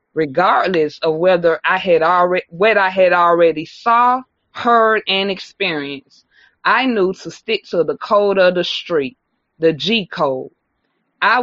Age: 20-39